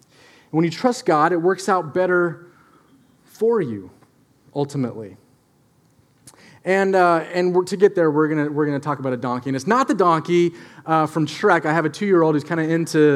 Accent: American